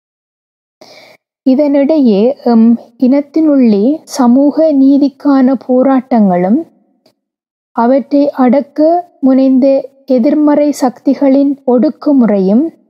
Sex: female